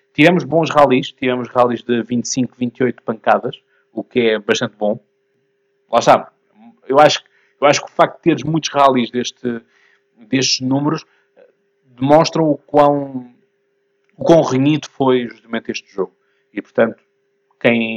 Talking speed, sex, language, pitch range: 140 wpm, male, Portuguese, 115-145 Hz